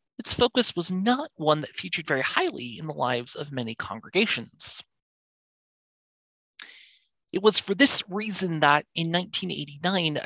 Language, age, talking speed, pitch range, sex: English, 30-49, 135 wpm, 145-205 Hz, male